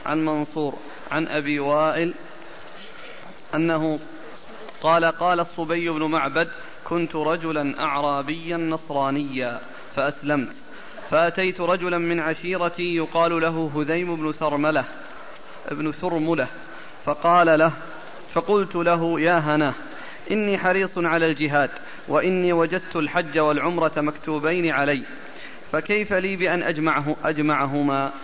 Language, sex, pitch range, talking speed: Arabic, male, 150-175 Hz, 100 wpm